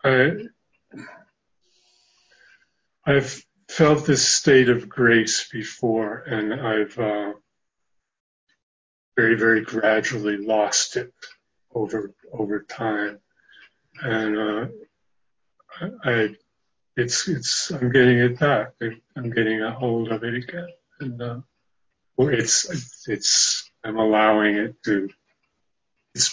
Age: 50-69